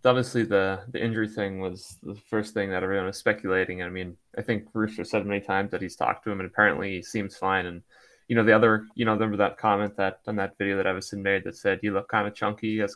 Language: English